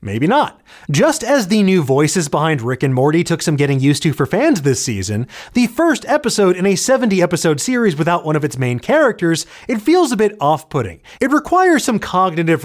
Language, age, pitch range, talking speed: English, 30-49, 155-225 Hz, 200 wpm